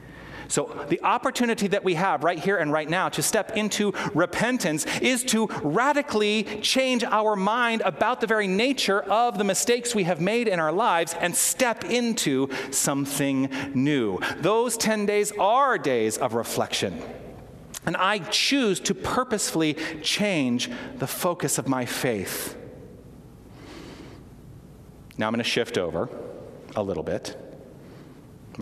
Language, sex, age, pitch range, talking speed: English, male, 40-59, 135-215 Hz, 140 wpm